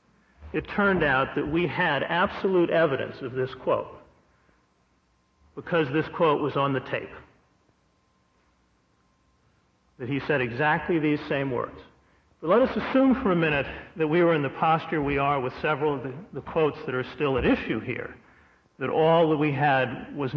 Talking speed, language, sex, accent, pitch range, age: 170 wpm, English, male, American, 130-175 Hz, 50-69